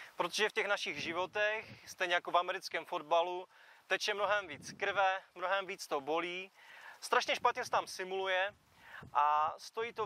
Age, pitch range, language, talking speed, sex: 30-49, 170-215 Hz, Czech, 155 wpm, male